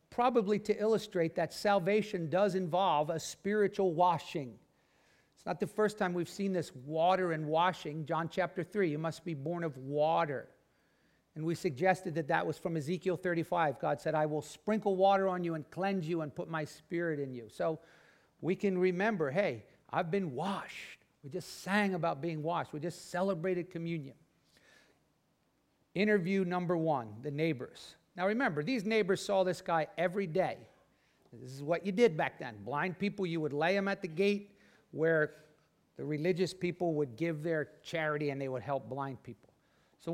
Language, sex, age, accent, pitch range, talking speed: English, male, 50-69, American, 160-200 Hz, 180 wpm